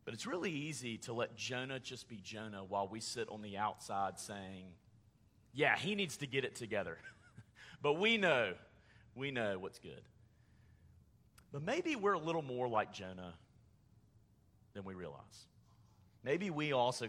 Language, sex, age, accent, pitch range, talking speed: English, male, 30-49, American, 110-175 Hz, 160 wpm